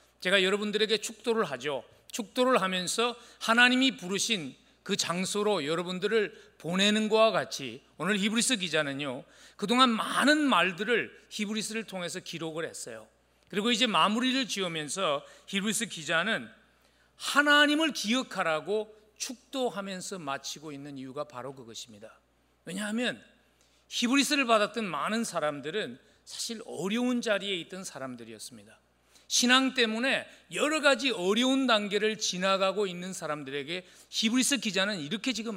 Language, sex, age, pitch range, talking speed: English, male, 40-59, 160-240 Hz, 105 wpm